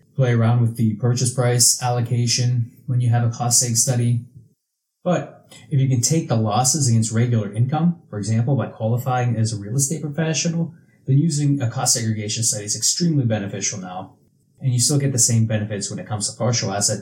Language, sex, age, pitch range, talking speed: English, male, 20-39, 110-135 Hz, 195 wpm